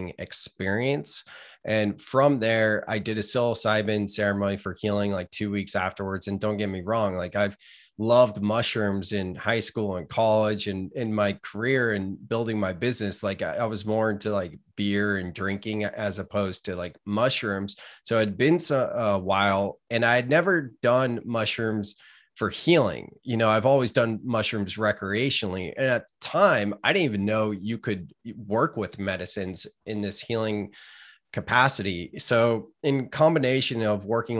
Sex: male